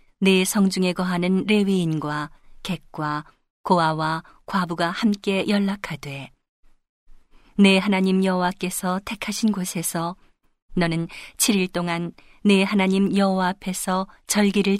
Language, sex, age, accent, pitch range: Korean, female, 40-59, native, 170-200 Hz